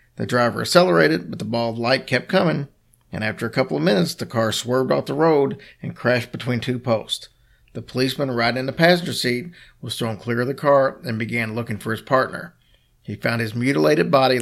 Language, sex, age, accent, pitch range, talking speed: English, male, 50-69, American, 115-135 Hz, 210 wpm